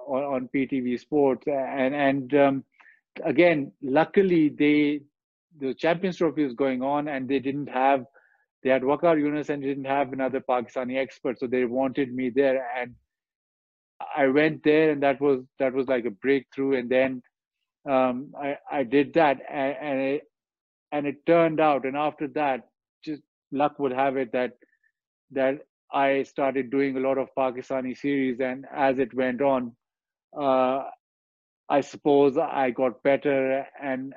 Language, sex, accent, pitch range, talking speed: English, male, Indian, 130-150 Hz, 160 wpm